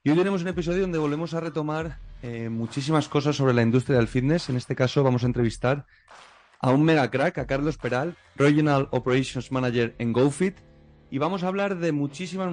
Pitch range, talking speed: 115-150 Hz, 190 wpm